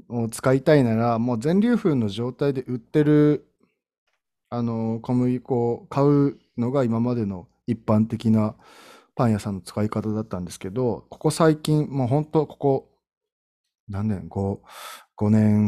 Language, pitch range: Japanese, 105-140 Hz